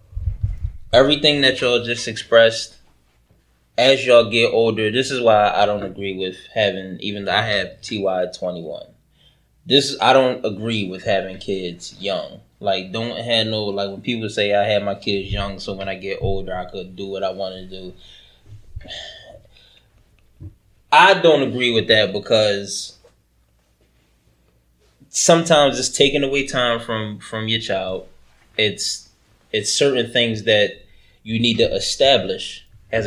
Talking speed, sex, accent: 150 wpm, male, American